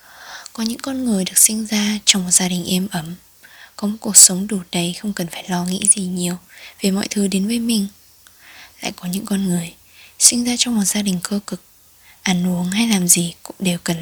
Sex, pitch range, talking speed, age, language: female, 175-210 Hz, 225 wpm, 20-39, Vietnamese